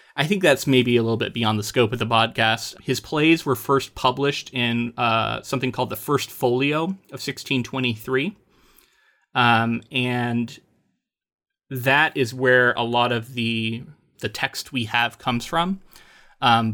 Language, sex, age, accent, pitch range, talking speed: English, male, 30-49, American, 120-140 Hz, 155 wpm